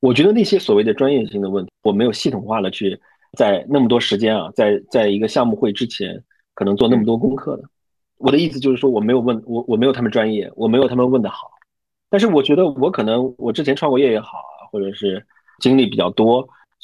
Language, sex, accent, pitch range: Chinese, male, native, 105-140 Hz